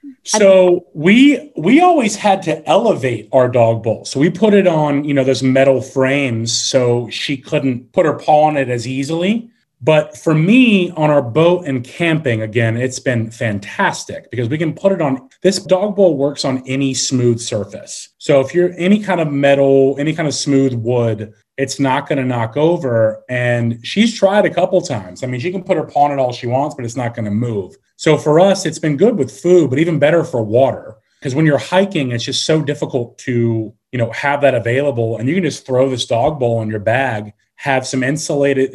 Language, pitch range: English, 120-160 Hz